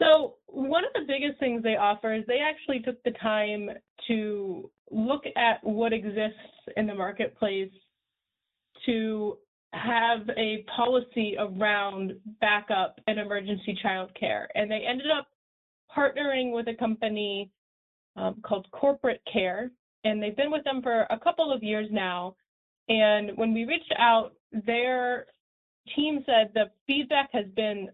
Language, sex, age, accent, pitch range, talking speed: English, female, 20-39, American, 205-245 Hz, 145 wpm